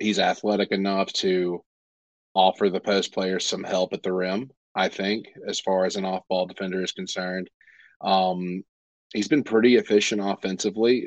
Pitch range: 90-100 Hz